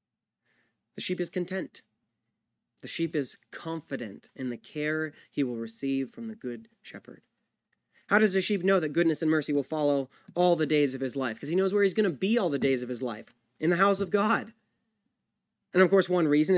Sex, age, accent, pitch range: male, 20-39, American, 145-180 Hz